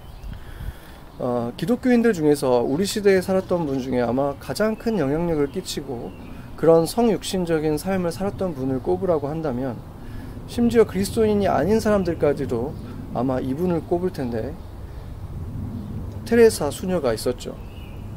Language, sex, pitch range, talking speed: English, male, 115-190 Hz, 100 wpm